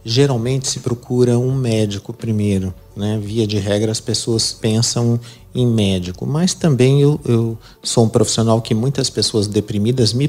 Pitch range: 105-130 Hz